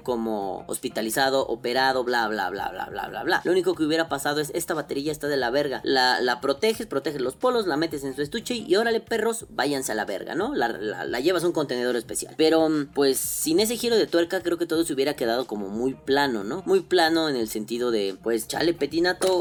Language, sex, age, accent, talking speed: Spanish, female, 30-49, Mexican, 230 wpm